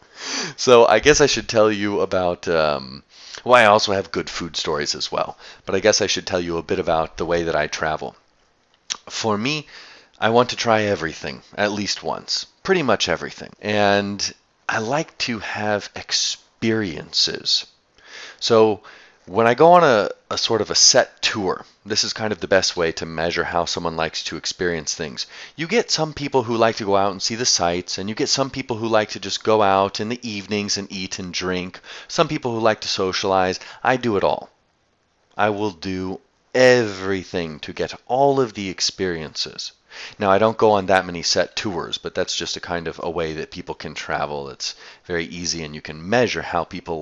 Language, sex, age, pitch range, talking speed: English, male, 30-49, 85-110 Hz, 205 wpm